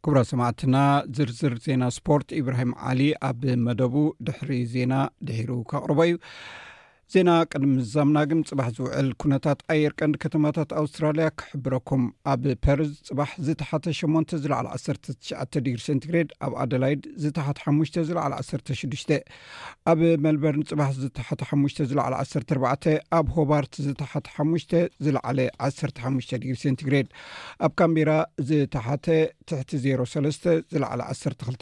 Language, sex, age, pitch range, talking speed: Amharic, male, 50-69, 135-155 Hz, 115 wpm